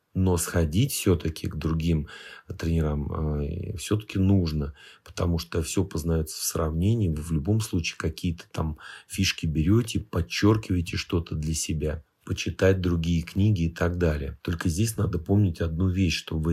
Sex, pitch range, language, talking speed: male, 80-100 Hz, Russian, 145 wpm